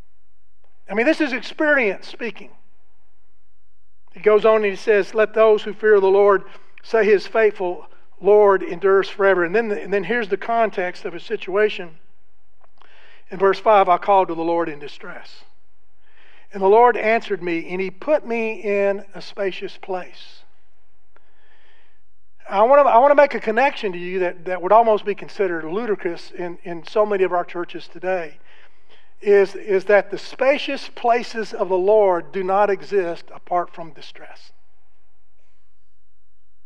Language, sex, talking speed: English, male, 155 wpm